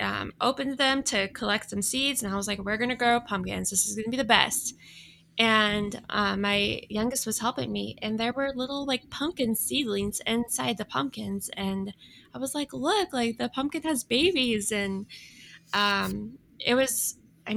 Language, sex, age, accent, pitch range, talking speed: English, female, 10-29, American, 205-250 Hz, 190 wpm